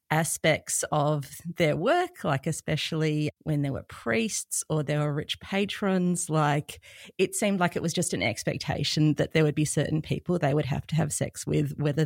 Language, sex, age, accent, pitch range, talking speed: English, female, 30-49, Australian, 150-185 Hz, 190 wpm